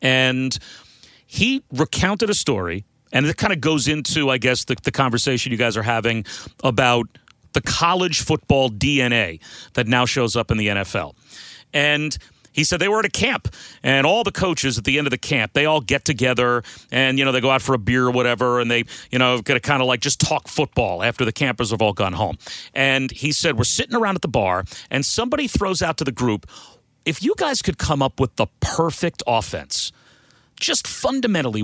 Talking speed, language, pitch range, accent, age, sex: 210 wpm, English, 125-165 Hz, American, 40-59, male